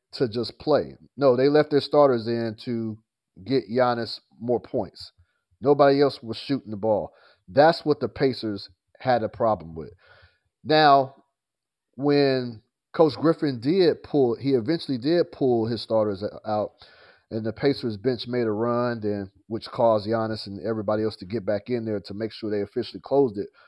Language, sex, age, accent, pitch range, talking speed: English, male, 30-49, American, 110-140 Hz, 170 wpm